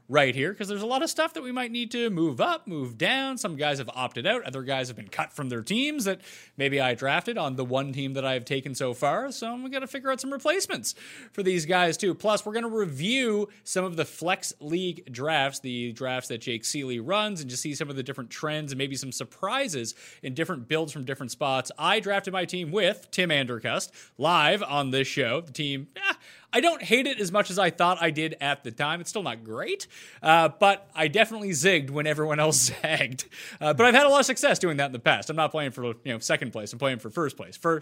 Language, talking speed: English, 250 wpm